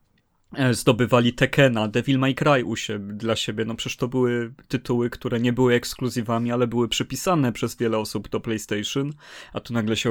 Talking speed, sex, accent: 180 wpm, male, native